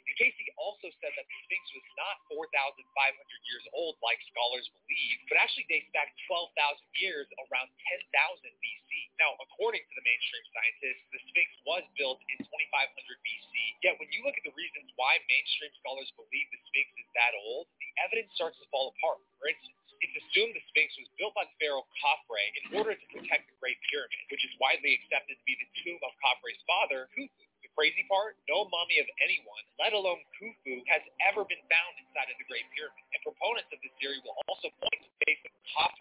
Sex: male